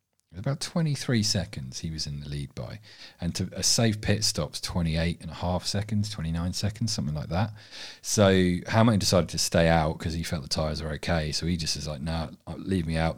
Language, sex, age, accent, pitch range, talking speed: English, male, 40-59, British, 80-95 Hz, 215 wpm